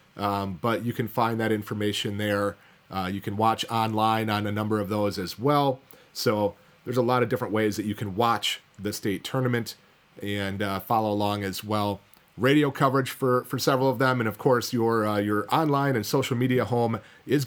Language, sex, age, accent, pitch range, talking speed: English, male, 30-49, American, 110-135 Hz, 205 wpm